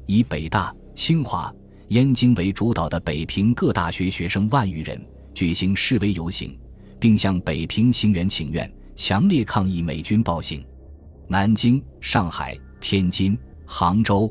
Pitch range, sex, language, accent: 80-105 Hz, male, Chinese, native